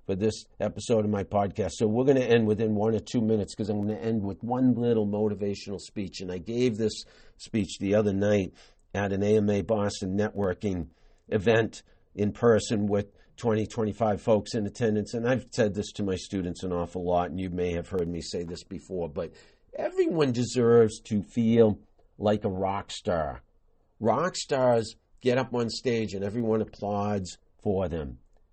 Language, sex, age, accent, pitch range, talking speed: English, male, 50-69, American, 100-120 Hz, 185 wpm